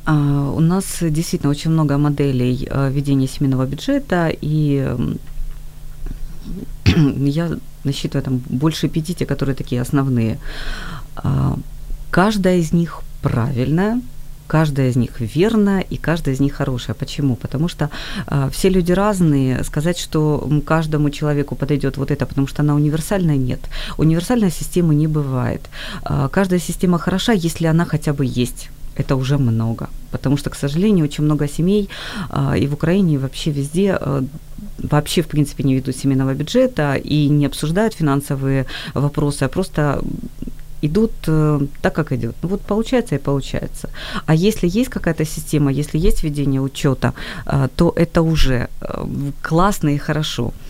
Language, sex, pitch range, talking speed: Ukrainian, female, 140-165 Hz, 140 wpm